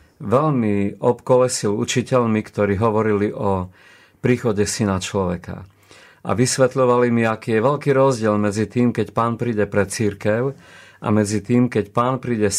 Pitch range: 100-120 Hz